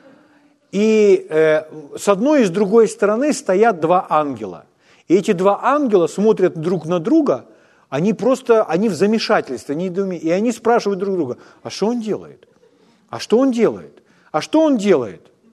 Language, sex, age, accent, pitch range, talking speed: Ukrainian, male, 40-59, native, 165-230 Hz, 160 wpm